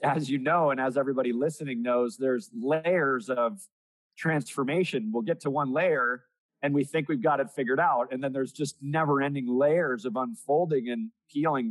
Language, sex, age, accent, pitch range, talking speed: English, male, 30-49, American, 125-165 Hz, 185 wpm